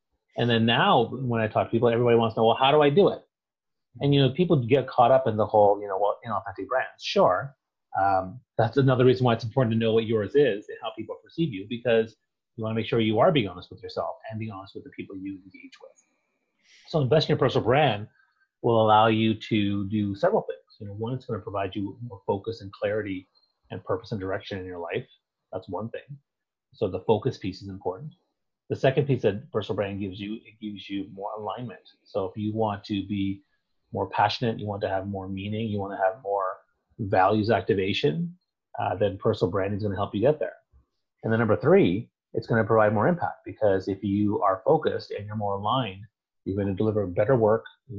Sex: male